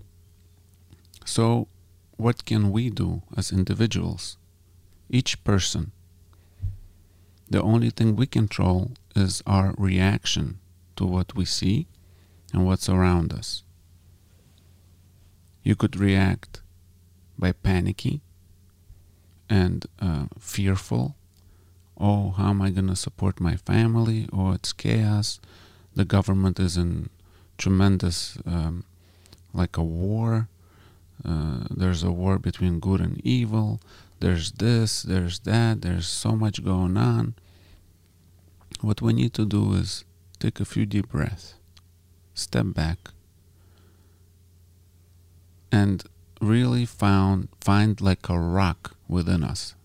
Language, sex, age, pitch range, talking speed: English, male, 40-59, 90-100 Hz, 110 wpm